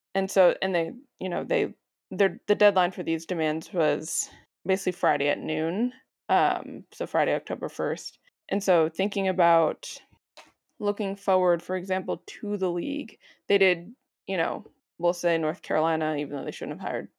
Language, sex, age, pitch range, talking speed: English, female, 20-39, 165-195 Hz, 170 wpm